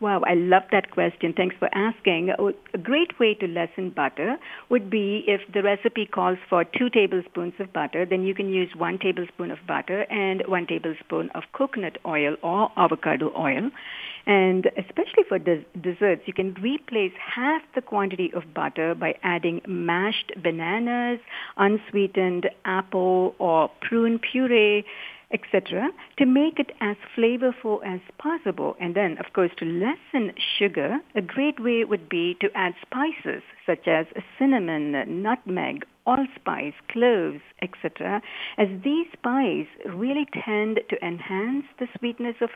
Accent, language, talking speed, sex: Indian, English, 145 wpm, female